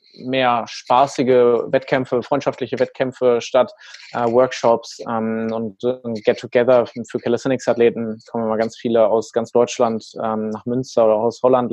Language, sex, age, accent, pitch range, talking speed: German, male, 20-39, German, 110-125 Hz, 150 wpm